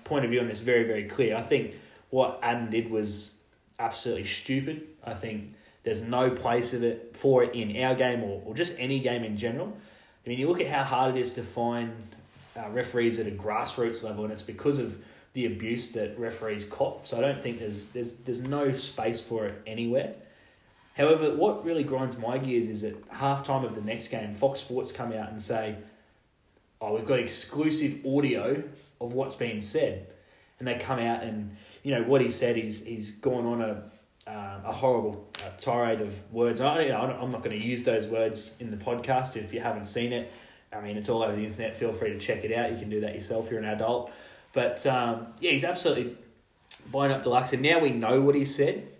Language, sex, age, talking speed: English, male, 20-39, 220 wpm